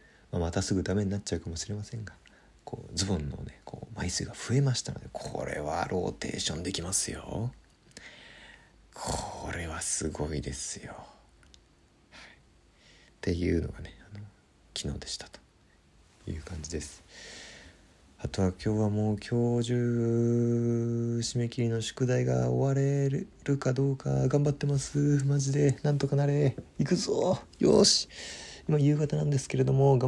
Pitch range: 85-120 Hz